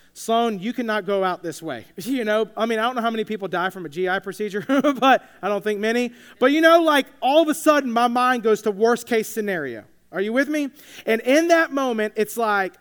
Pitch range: 195-245 Hz